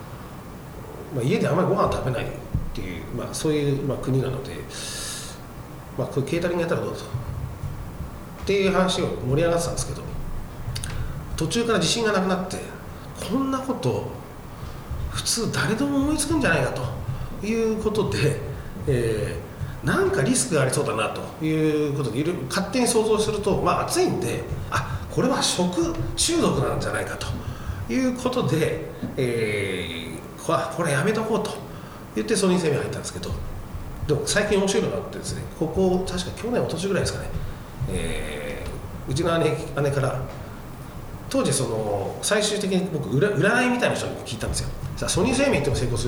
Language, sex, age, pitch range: Japanese, male, 40-59, 130-205 Hz